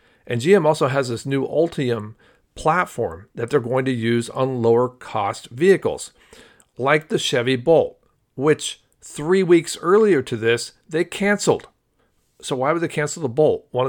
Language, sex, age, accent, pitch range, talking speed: English, male, 40-59, American, 115-145 Hz, 160 wpm